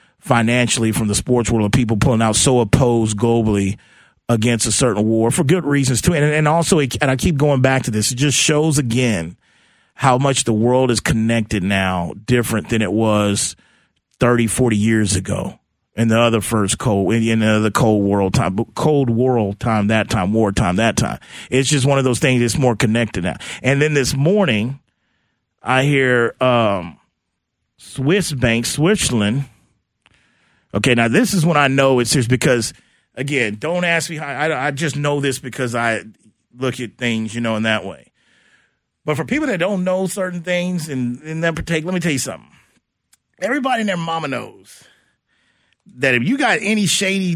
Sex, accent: male, American